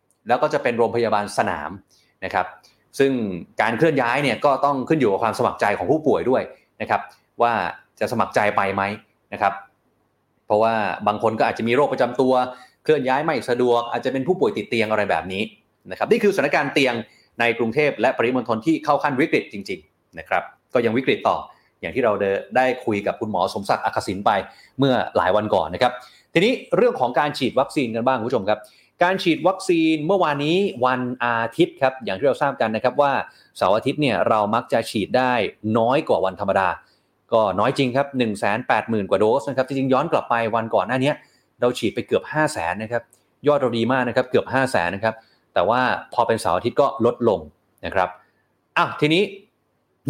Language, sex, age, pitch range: Thai, male, 20-39, 110-140 Hz